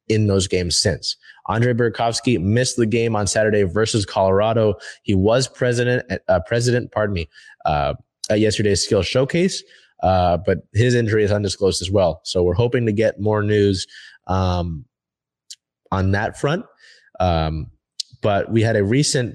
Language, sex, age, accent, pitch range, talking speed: English, male, 20-39, American, 100-120 Hz, 155 wpm